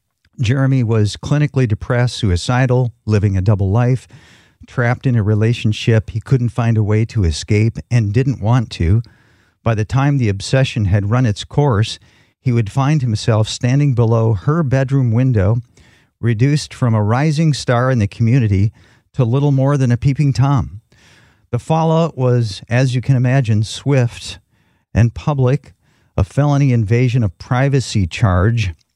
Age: 50-69